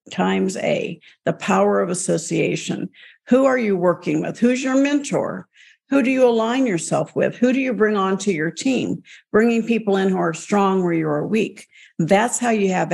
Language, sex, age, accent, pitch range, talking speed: English, female, 50-69, American, 180-235 Hz, 185 wpm